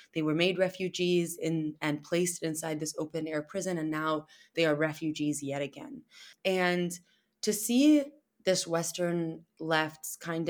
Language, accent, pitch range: English, American, 150-195 Hz